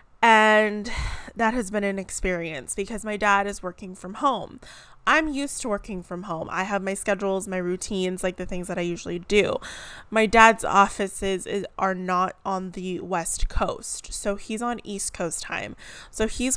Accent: American